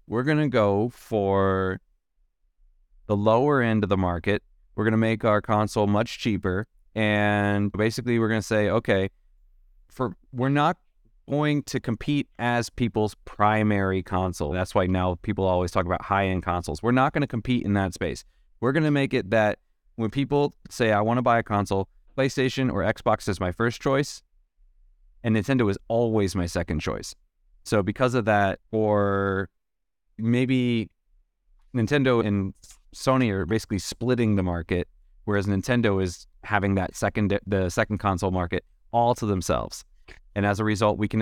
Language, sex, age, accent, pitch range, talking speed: English, male, 30-49, American, 95-115 Hz, 165 wpm